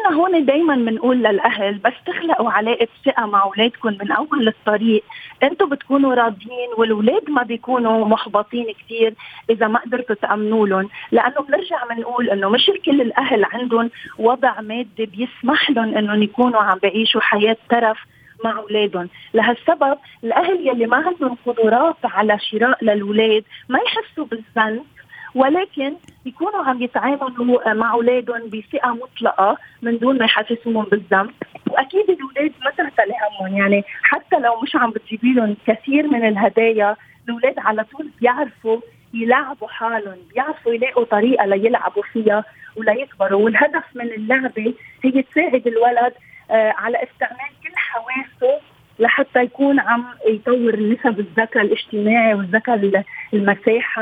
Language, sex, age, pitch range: Arabic, female, 40-59, 220-265 Hz